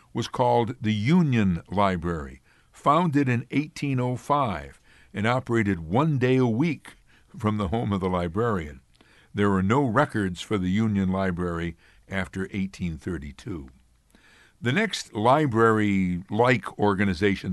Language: English